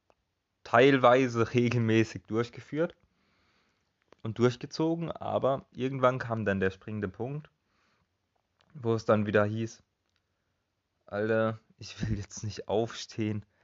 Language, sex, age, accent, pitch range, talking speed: German, male, 20-39, German, 95-115 Hz, 100 wpm